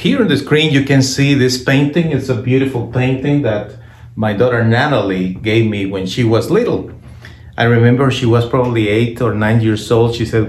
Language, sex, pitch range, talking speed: English, male, 110-135 Hz, 200 wpm